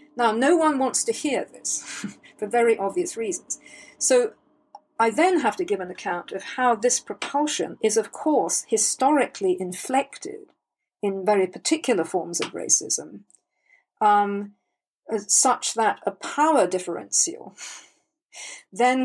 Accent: British